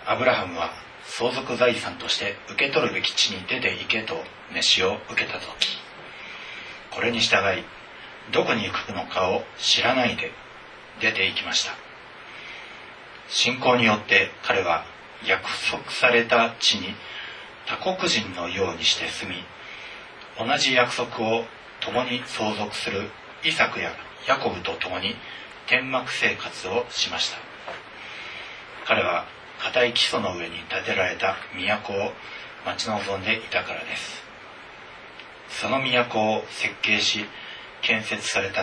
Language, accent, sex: Japanese, native, male